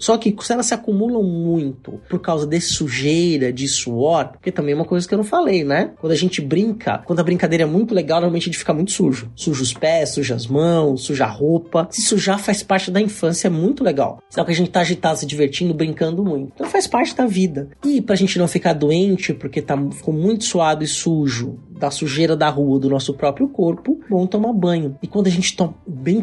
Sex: male